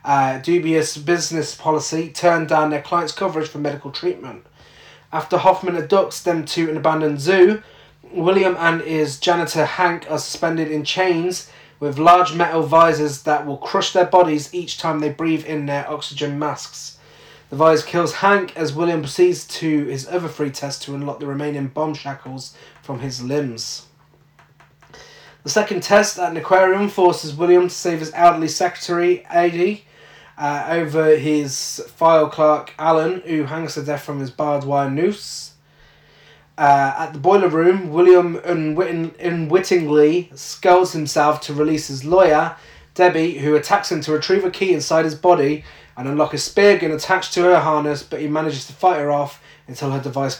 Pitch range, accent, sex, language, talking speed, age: 150-180 Hz, British, male, English, 170 wpm, 30-49